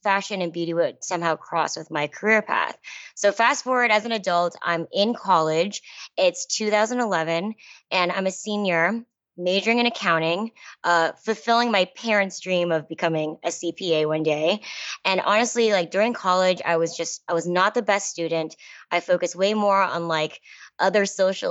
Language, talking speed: English, 165 wpm